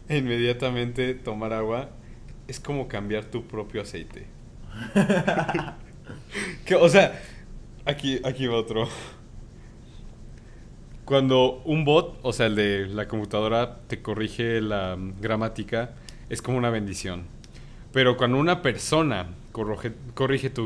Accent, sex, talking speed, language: Mexican, male, 120 wpm, Spanish